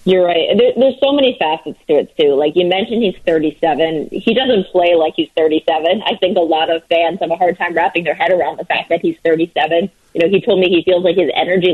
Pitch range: 160-205 Hz